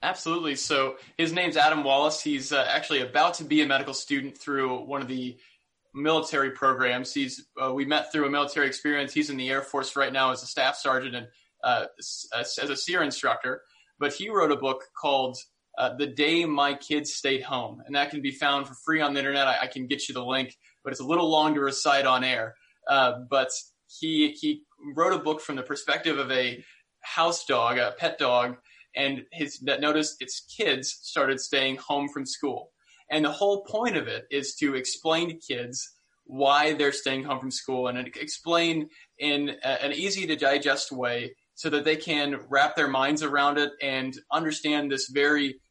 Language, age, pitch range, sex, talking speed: English, 20-39, 130-150 Hz, male, 195 wpm